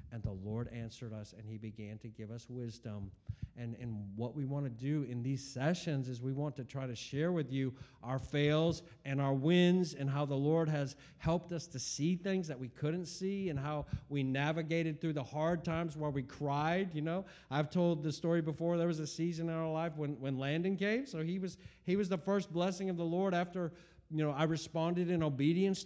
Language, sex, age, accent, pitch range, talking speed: English, male, 50-69, American, 130-175 Hz, 225 wpm